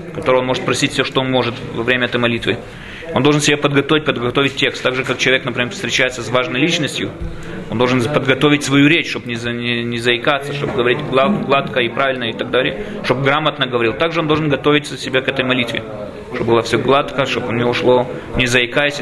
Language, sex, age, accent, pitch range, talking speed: Russian, male, 20-39, native, 125-155 Hz, 200 wpm